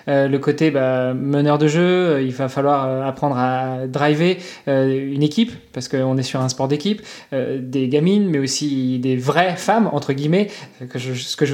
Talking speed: 215 wpm